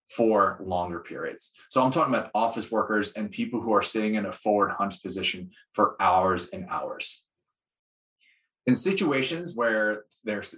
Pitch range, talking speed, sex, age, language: 105-130 Hz, 155 wpm, male, 20-39, English